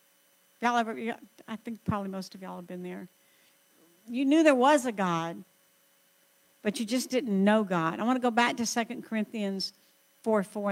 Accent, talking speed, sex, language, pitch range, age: American, 185 wpm, female, English, 210-285 Hz, 60-79